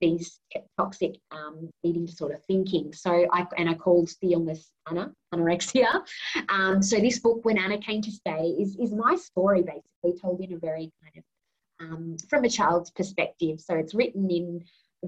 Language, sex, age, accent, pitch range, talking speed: English, female, 20-39, Australian, 170-210 Hz, 185 wpm